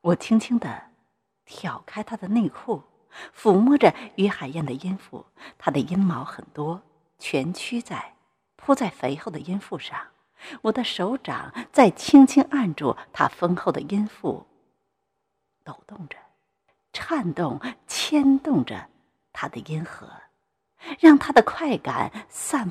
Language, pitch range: Chinese, 180-275 Hz